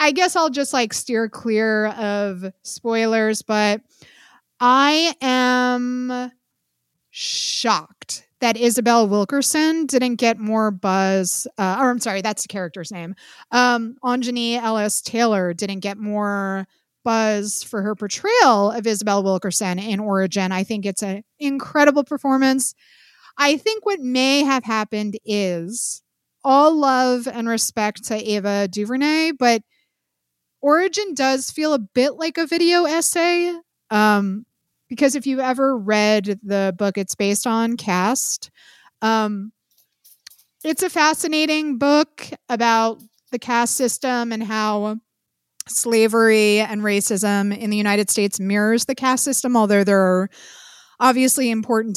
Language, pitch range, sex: English, 210-270 Hz, female